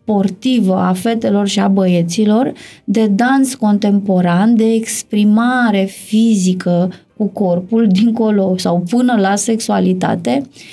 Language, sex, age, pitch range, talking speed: Romanian, female, 20-39, 205-255 Hz, 105 wpm